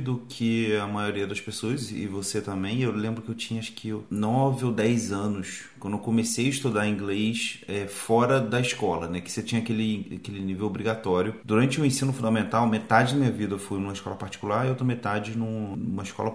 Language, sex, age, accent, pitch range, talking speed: Portuguese, male, 30-49, Brazilian, 105-135 Hz, 205 wpm